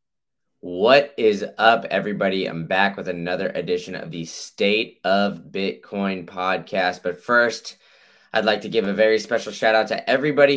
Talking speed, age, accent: 160 wpm, 20-39, American